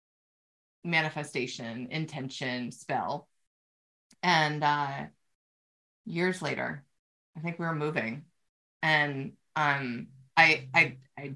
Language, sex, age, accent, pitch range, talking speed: English, female, 30-49, American, 145-180 Hz, 90 wpm